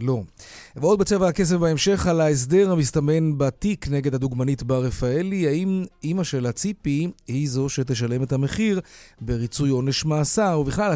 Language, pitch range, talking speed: Hebrew, 130-175 Hz, 140 wpm